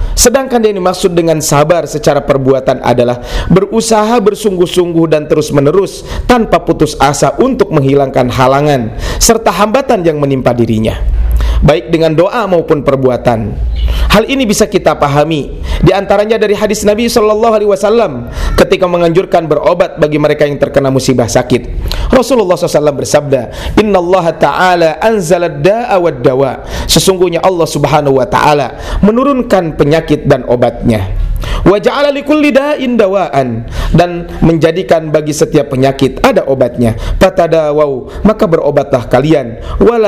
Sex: male